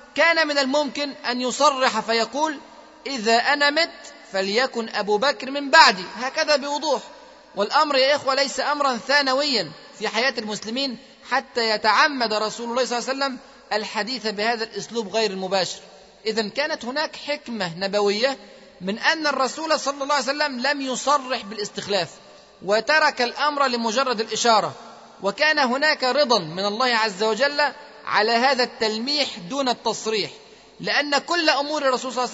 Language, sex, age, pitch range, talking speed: Arabic, male, 30-49, 220-280 Hz, 140 wpm